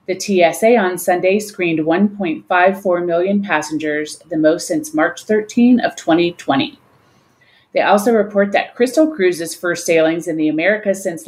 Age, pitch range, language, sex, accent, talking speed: 30-49, 165-210 Hz, English, female, American, 145 wpm